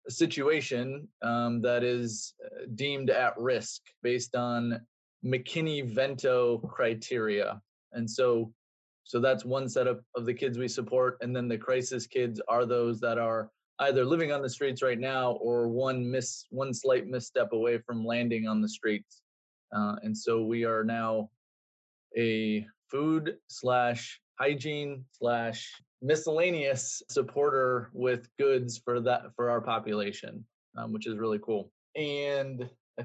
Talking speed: 145 wpm